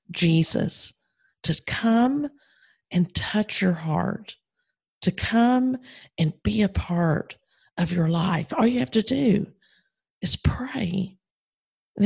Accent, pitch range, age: American, 175-230 Hz, 40-59